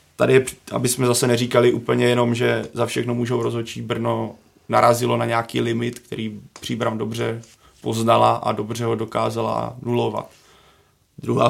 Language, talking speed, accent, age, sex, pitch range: Czech, 140 wpm, native, 30-49, male, 115-120 Hz